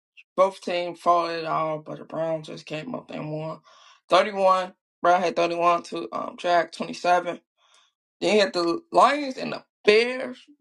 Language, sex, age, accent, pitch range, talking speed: English, male, 20-39, American, 175-260 Hz, 165 wpm